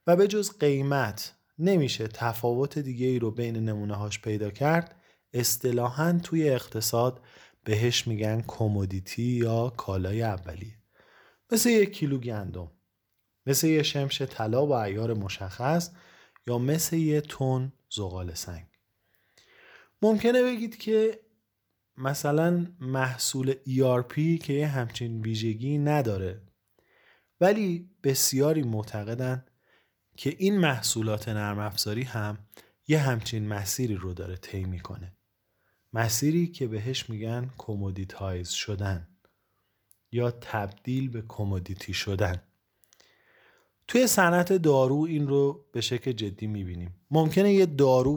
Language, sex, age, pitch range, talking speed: Persian, male, 30-49, 105-145 Hz, 110 wpm